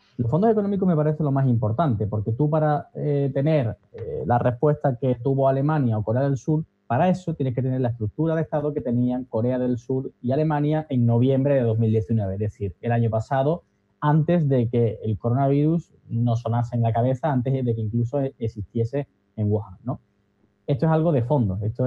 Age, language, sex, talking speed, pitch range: 20-39, Spanish, male, 200 wpm, 110-145 Hz